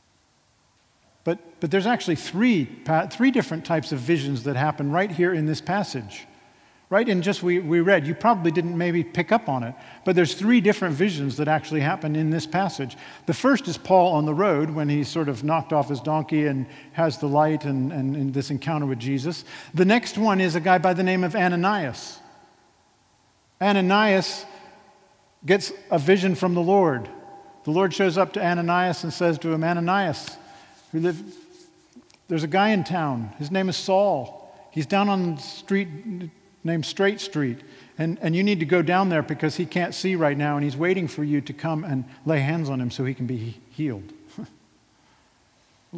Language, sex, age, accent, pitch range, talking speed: English, male, 50-69, American, 150-190 Hz, 195 wpm